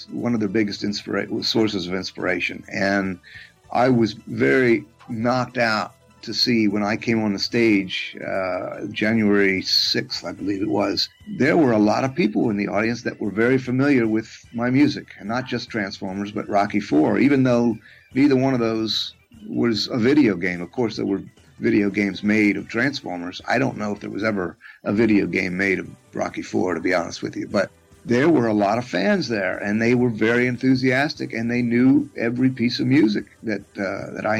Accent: American